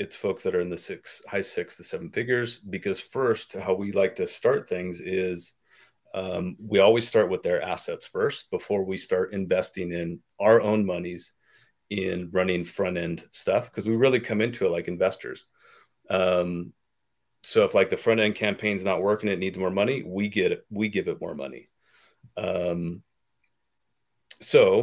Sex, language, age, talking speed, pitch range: male, English, 30-49, 175 wpm, 90-120 Hz